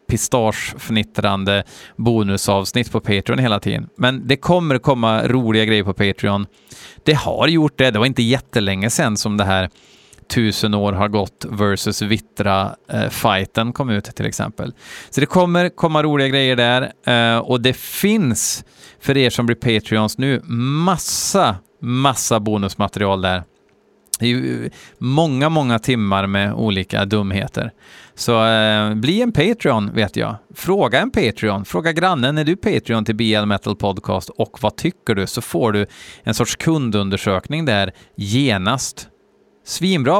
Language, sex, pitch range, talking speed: Swedish, male, 105-130 Hz, 140 wpm